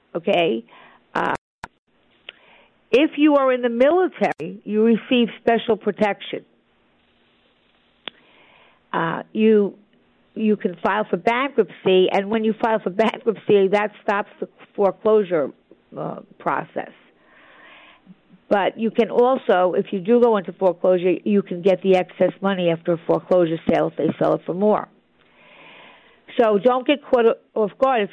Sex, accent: female, American